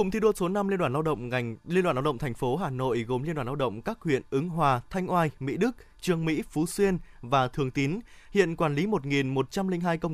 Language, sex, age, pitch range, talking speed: Vietnamese, male, 20-39, 140-185 Hz, 255 wpm